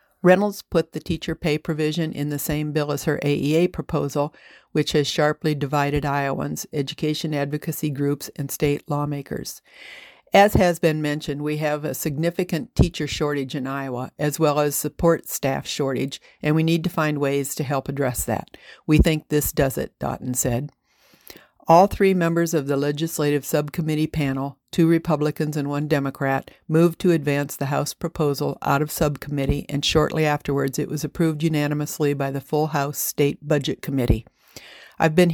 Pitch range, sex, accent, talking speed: 145-160 Hz, female, American, 165 wpm